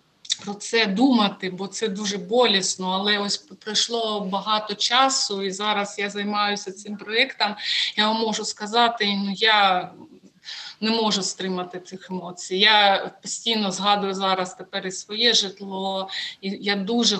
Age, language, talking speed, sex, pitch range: 20-39, Ukrainian, 140 wpm, female, 190-220 Hz